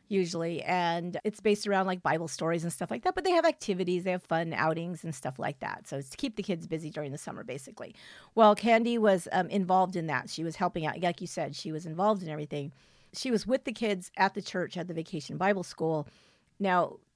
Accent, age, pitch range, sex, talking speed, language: American, 50-69, 165-200 Hz, female, 240 wpm, English